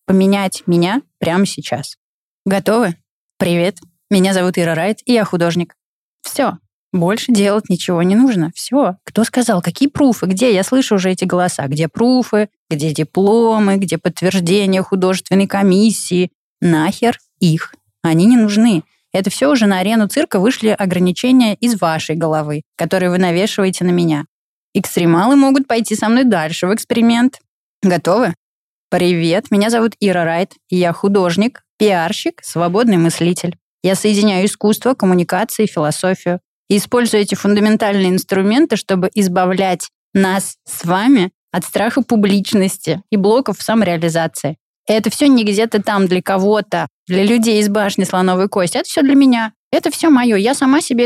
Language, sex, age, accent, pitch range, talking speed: Russian, female, 20-39, native, 180-225 Hz, 145 wpm